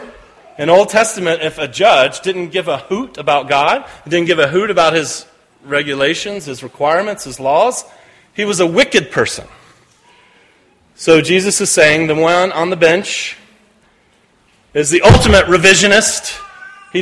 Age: 30-49